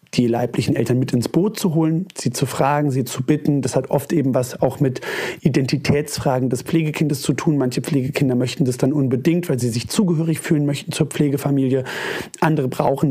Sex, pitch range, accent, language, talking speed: male, 125-155 Hz, German, German, 190 wpm